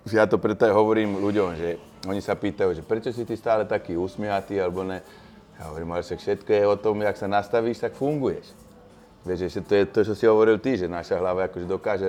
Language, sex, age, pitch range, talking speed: Slovak, male, 20-39, 95-110 Hz, 225 wpm